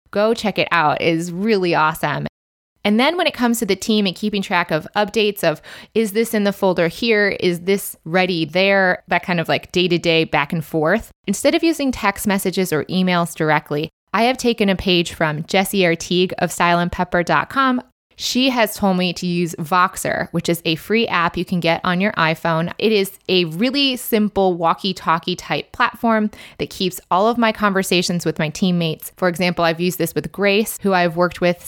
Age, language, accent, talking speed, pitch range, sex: 20-39, English, American, 195 wpm, 170-210 Hz, female